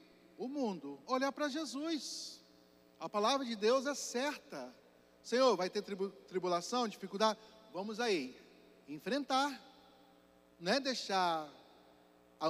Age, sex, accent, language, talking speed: 40-59, male, Brazilian, Portuguese, 110 wpm